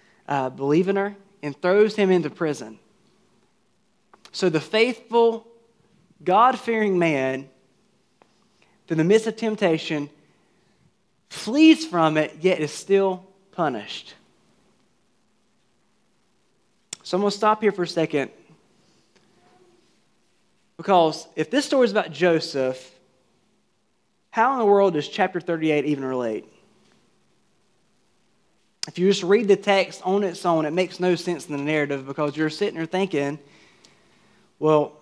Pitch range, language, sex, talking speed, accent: 150-190 Hz, English, male, 125 wpm, American